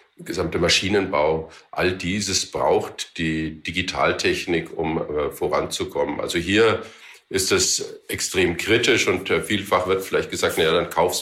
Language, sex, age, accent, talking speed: German, male, 50-69, German, 135 wpm